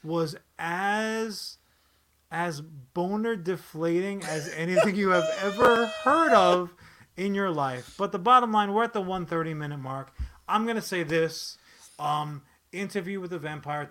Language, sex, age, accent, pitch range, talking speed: English, male, 30-49, American, 155-195 Hz, 145 wpm